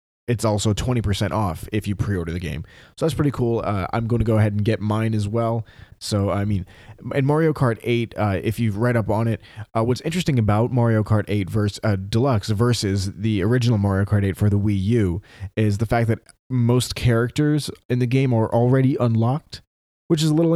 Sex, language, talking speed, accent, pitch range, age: male, English, 215 wpm, American, 100-125 Hz, 30-49